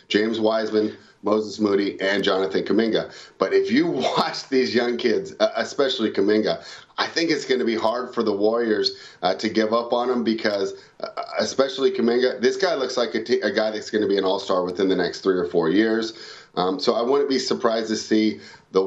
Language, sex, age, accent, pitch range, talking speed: English, male, 30-49, American, 110-140 Hz, 205 wpm